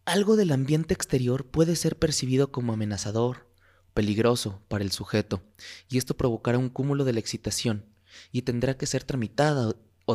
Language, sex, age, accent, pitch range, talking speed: Spanish, male, 30-49, Mexican, 105-140 Hz, 160 wpm